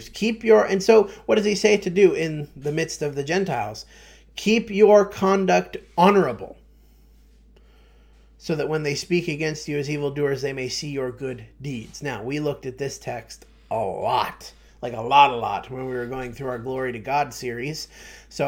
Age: 30-49